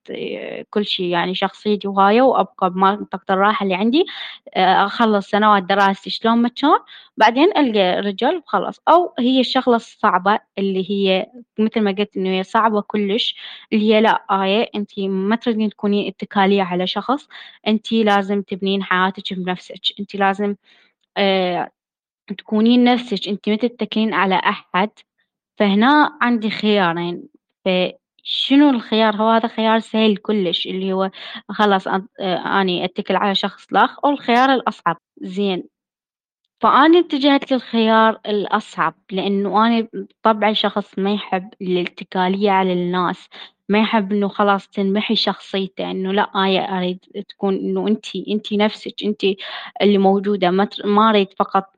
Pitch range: 190-220 Hz